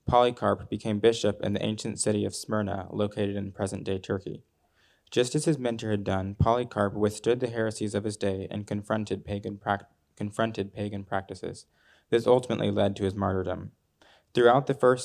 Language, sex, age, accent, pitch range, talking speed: English, male, 20-39, American, 100-115 Hz, 170 wpm